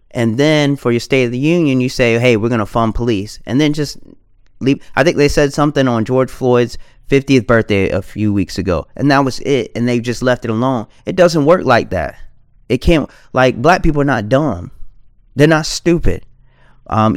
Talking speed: 215 wpm